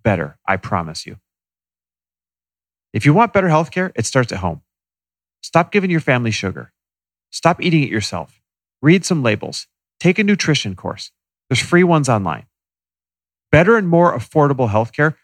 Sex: male